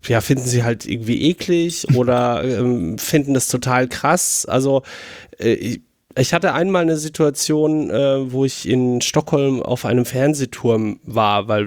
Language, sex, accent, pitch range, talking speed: German, male, German, 115-135 Hz, 150 wpm